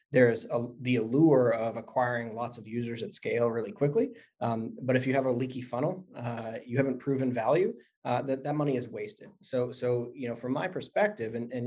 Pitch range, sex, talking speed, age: 120-135 Hz, male, 210 wpm, 20-39